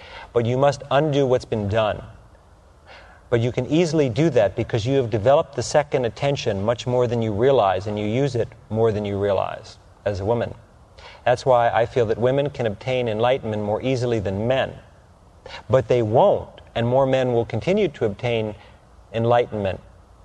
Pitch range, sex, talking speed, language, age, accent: 95-130 Hz, male, 180 wpm, English, 40-59, American